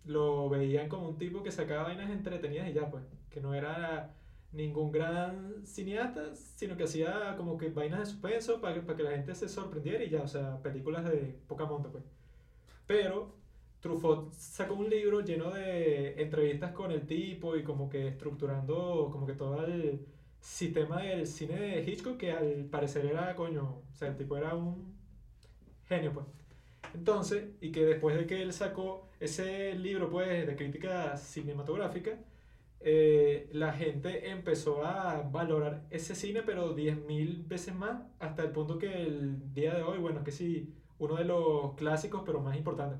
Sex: male